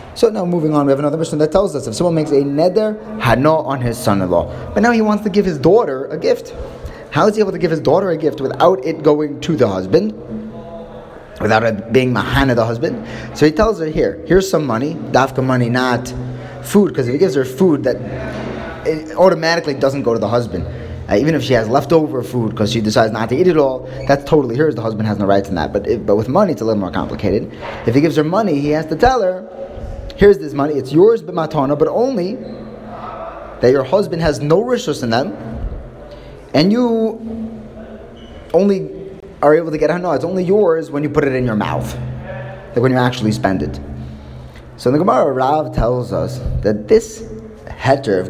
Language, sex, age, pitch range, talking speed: English, male, 20-39, 110-165 Hz, 215 wpm